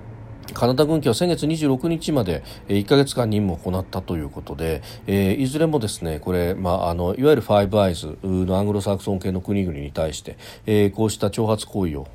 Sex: male